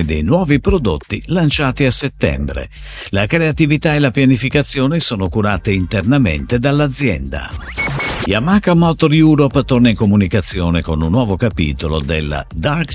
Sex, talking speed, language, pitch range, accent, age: male, 125 wpm, Italian, 90-145 Hz, native, 50-69